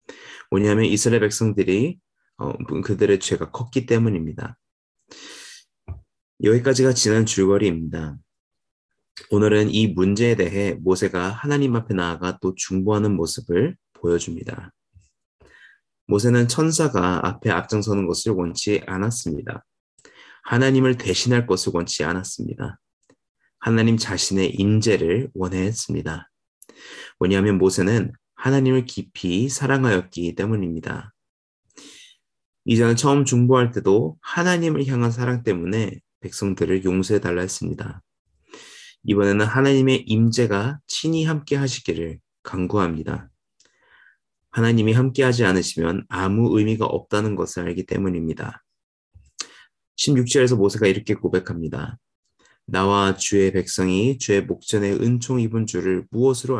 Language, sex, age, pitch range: Korean, male, 30-49, 95-120 Hz